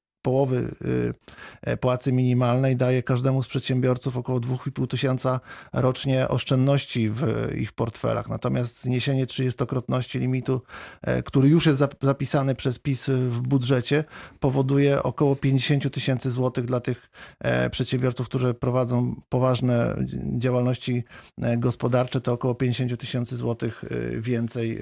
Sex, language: male, Polish